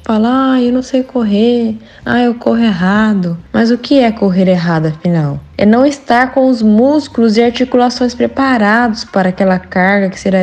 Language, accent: Portuguese, Brazilian